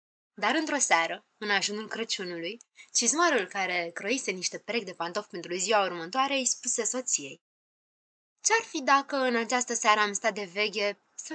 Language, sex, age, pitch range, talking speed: Romanian, female, 20-39, 195-275 Hz, 160 wpm